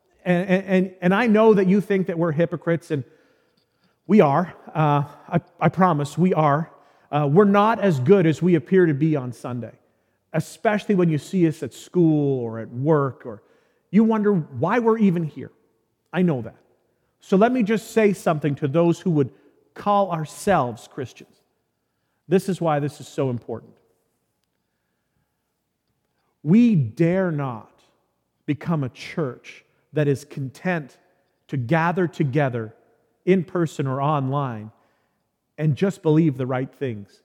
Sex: male